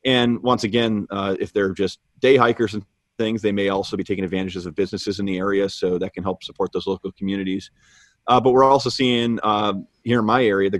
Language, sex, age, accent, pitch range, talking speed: English, male, 30-49, American, 95-110 Hz, 230 wpm